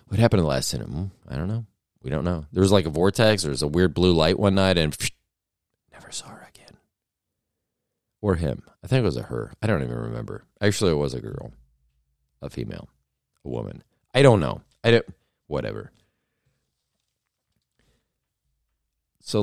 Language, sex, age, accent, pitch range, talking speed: English, male, 40-59, American, 75-105 Hz, 180 wpm